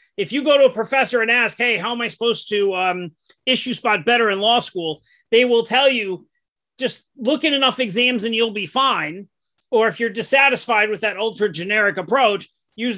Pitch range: 210-265 Hz